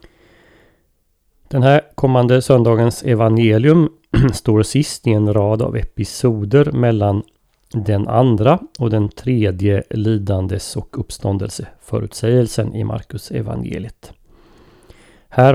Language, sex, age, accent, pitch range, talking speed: Swedish, male, 30-49, native, 105-125 Hz, 95 wpm